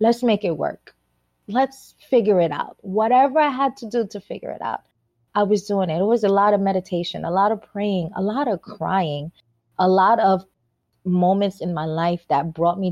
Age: 20-39